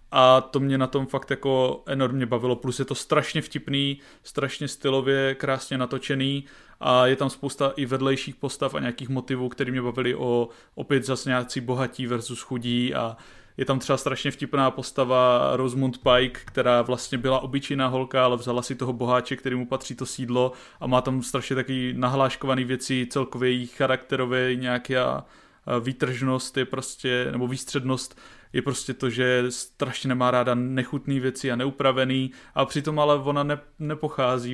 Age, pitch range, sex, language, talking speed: 20-39, 125-140 Hz, male, Czech, 160 wpm